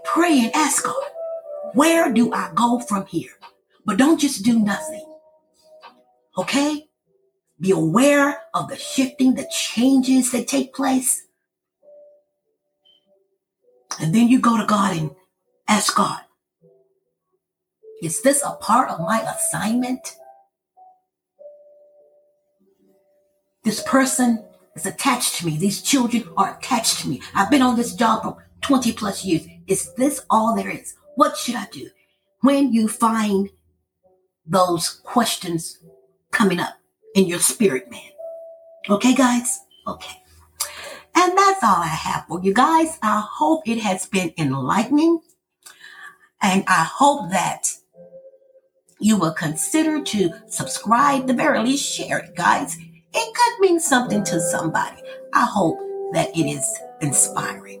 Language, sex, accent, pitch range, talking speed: English, female, American, 185-295 Hz, 130 wpm